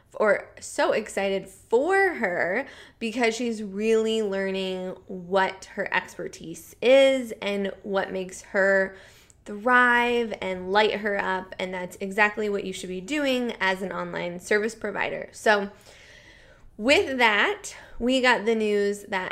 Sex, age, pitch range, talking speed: female, 20-39, 190-225 Hz, 135 wpm